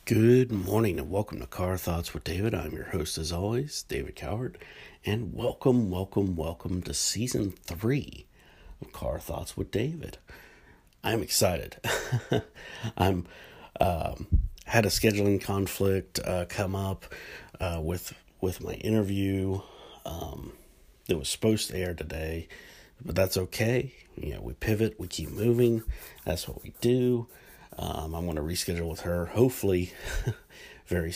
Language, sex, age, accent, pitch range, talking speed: English, male, 50-69, American, 85-105 Hz, 140 wpm